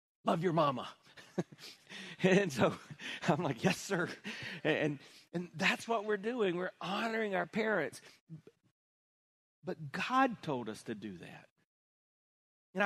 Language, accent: English, American